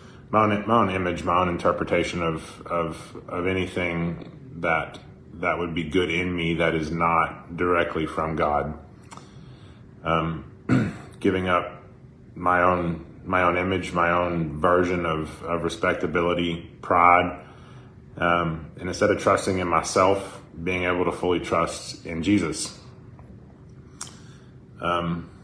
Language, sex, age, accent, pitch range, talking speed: English, male, 30-49, American, 85-95 Hz, 125 wpm